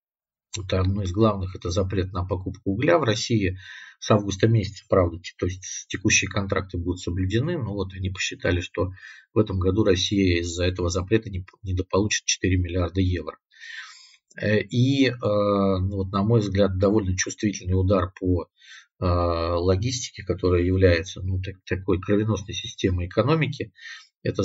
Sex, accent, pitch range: male, native, 90-105 Hz